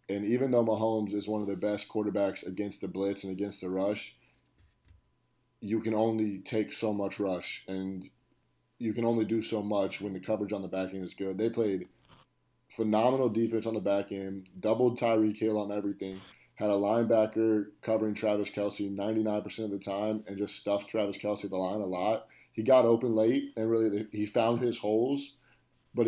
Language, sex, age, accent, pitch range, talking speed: English, male, 20-39, American, 105-120 Hz, 190 wpm